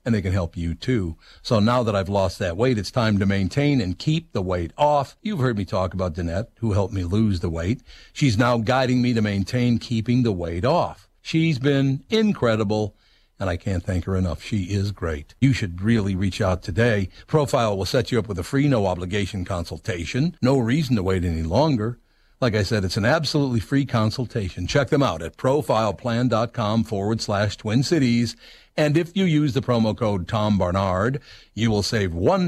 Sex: male